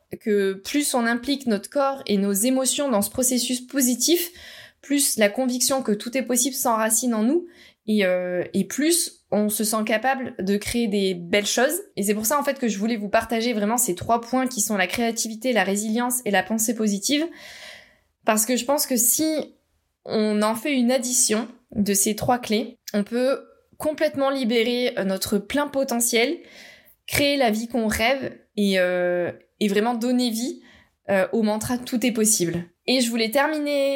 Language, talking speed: French, 185 wpm